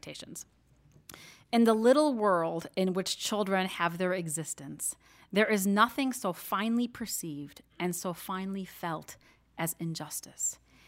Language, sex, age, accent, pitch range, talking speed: English, female, 40-59, American, 165-210 Hz, 120 wpm